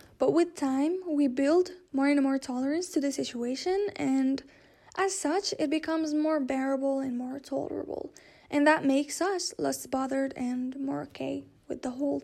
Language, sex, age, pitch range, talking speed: English, female, 10-29, 265-315 Hz, 165 wpm